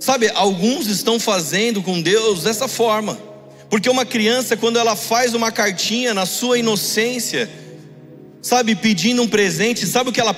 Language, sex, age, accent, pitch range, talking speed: Portuguese, male, 40-59, Brazilian, 175-230 Hz, 155 wpm